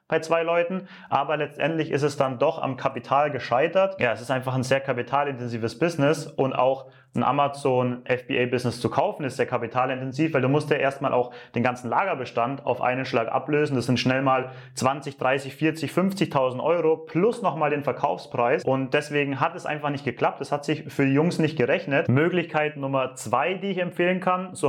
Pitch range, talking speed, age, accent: 130-160 Hz, 190 wpm, 30-49, German